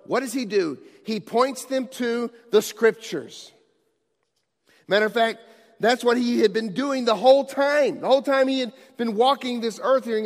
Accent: American